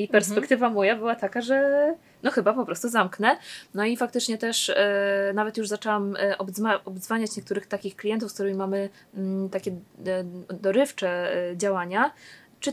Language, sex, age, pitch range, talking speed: Polish, female, 20-39, 200-225 Hz, 160 wpm